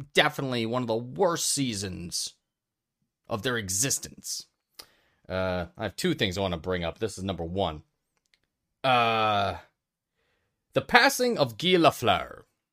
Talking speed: 135 wpm